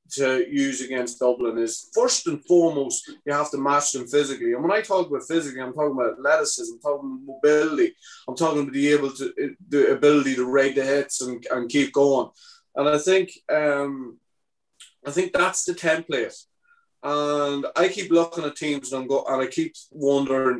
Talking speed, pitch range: 190 wpm, 135-180 Hz